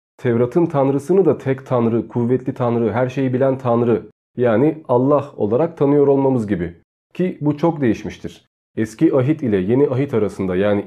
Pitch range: 115-150 Hz